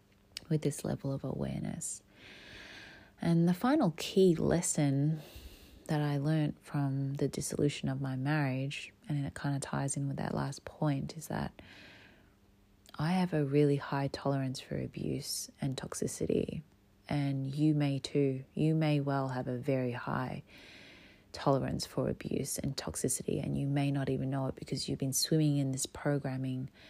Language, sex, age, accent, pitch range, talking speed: English, female, 30-49, Australian, 100-145 Hz, 160 wpm